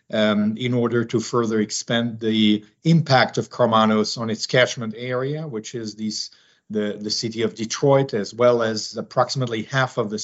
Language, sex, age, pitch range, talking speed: English, male, 50-69, 110-130 Hz, 165 wpm